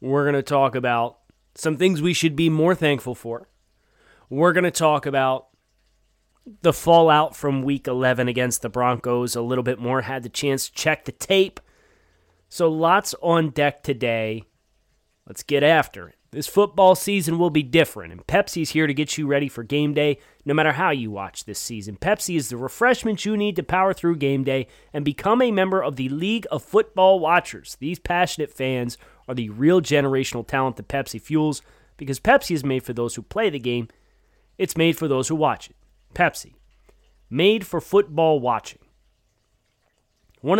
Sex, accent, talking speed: male, American, 185 wpm